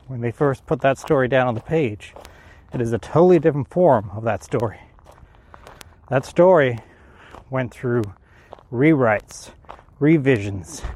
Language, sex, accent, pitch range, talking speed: English, male, American, 105-135 Hz, 135 wpm